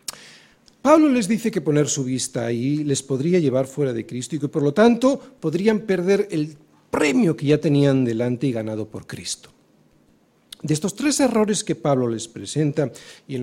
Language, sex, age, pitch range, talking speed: Spanish, male, 40-59, 130-215 Hz, 185 wpm